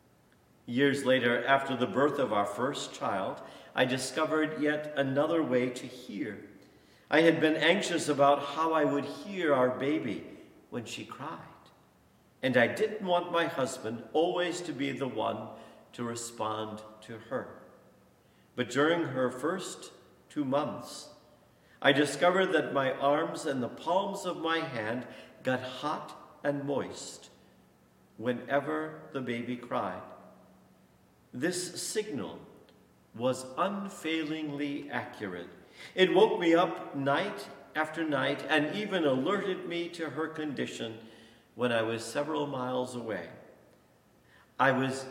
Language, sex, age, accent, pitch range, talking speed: English, male, 50-69, American, 120-160 Hz, 130 wpm